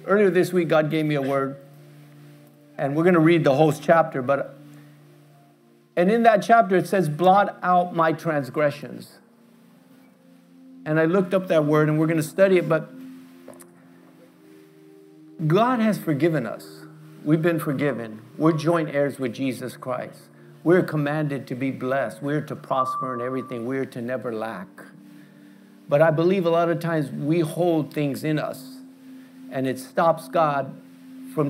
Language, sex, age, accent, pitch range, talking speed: English, male, 50-69, American, 130-170 Hz, 160 wpm